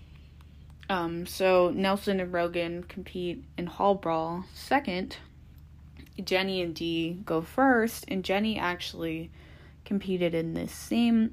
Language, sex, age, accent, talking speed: English, female, 20-39, American, 115 wpm